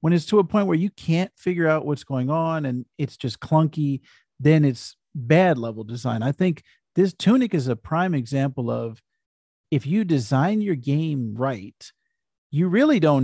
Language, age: English, 50-69